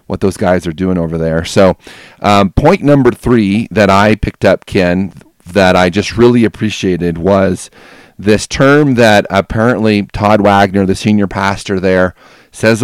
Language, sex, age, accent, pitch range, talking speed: English, male, 40-59, American, 95-115 Hz, 160 wpm